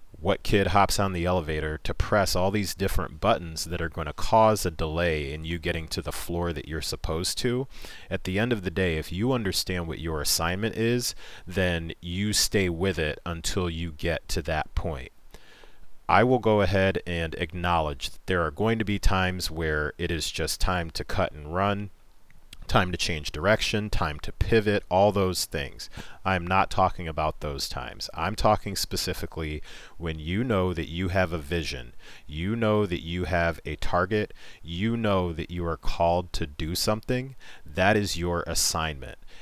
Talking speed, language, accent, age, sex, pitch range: 185 wpm, English, American, 40-59, male, 80-100 Hz